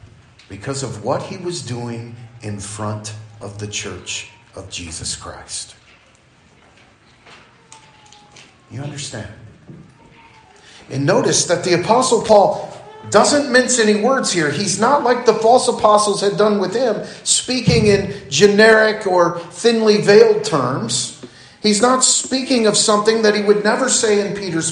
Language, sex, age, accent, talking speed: English, male, 40-59, American, 135 wpm